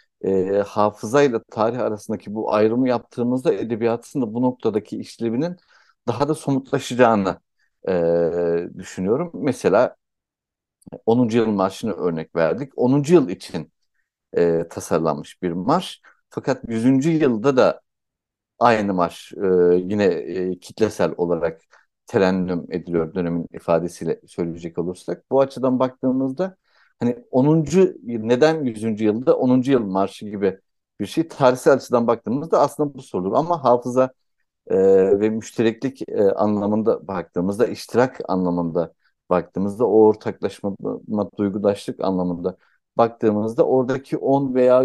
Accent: native